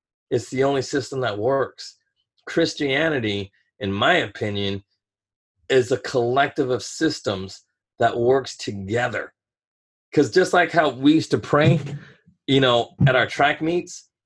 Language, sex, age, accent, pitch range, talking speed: English, male, 30-49, American, 120-155 Hz, 135 wpm